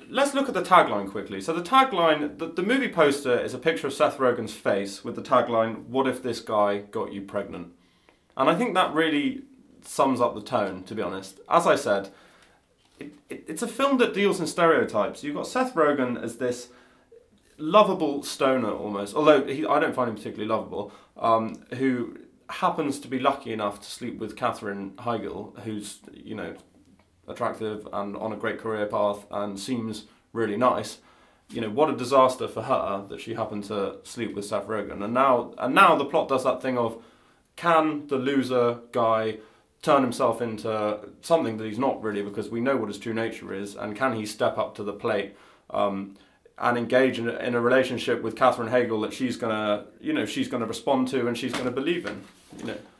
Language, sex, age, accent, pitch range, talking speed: English, male, 20-39, British, 110-155 Hz, 195 wpm